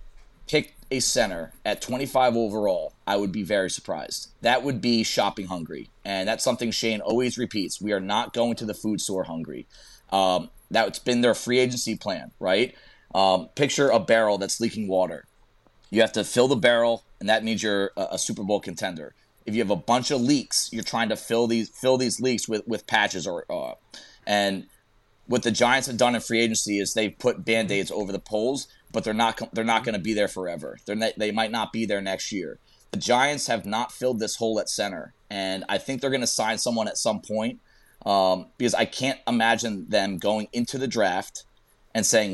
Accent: American